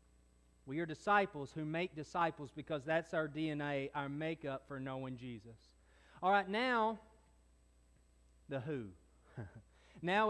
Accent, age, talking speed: American, 30-49, 120 wpm